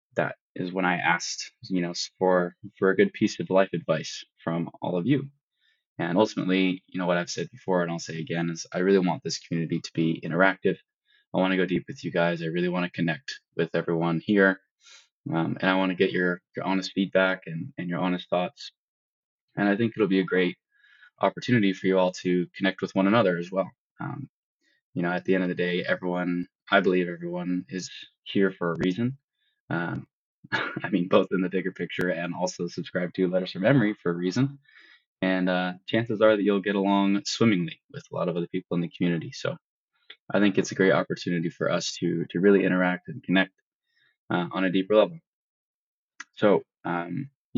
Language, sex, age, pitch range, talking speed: English, male, 20-39, 90-95 Hz, 210 wpm